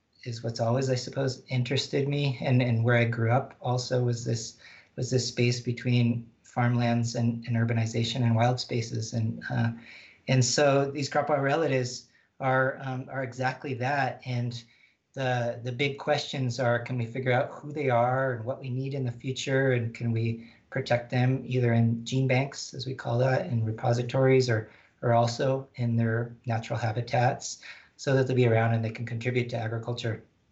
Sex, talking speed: male, 185 wpm